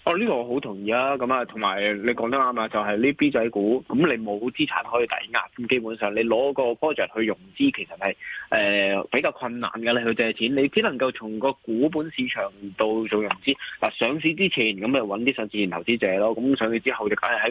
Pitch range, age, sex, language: 110-140 Hz, 20-39, male, Chinese